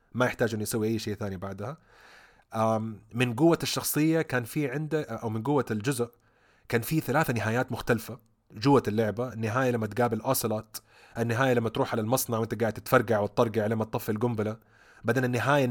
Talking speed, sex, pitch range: 165 wpm, male, 110-135 Hz